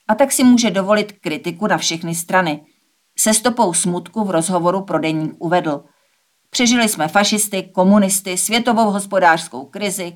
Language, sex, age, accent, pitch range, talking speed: Czech, female, 50-69, native, 165-205 Hz, 140 wpm